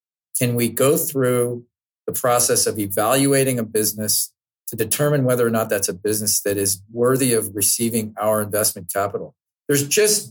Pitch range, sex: 105-130 Hz, male